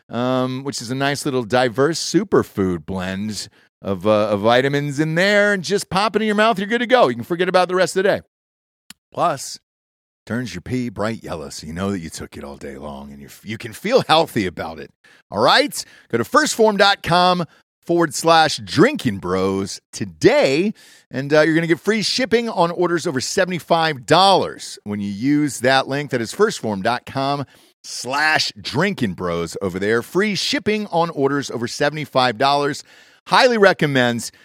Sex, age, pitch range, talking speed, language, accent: male, 40-59, 110-175 Hz, 175 wpm, English, American